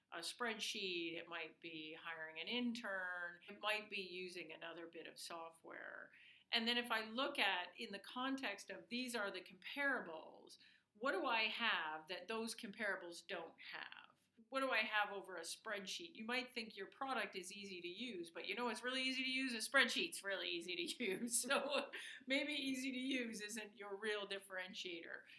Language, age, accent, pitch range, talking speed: English, 50-69, American, 190-255 Hz, 185 wpm